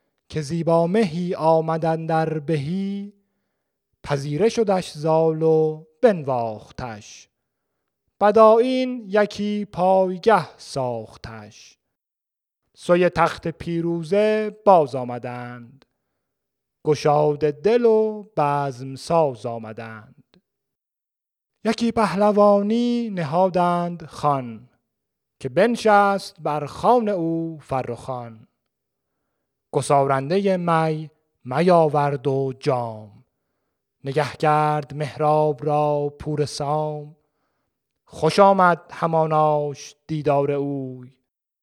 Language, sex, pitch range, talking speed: Persian, male, 145-185 Hz, 75 wpm